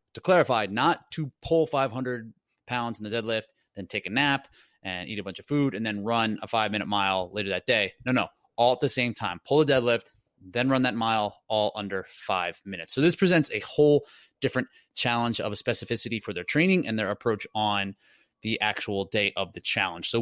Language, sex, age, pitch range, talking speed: English, male, 20-39, 105-140 Hz, 215 wpm